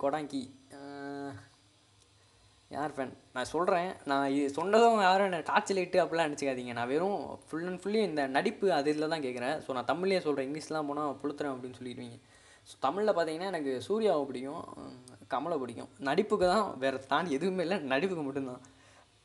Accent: native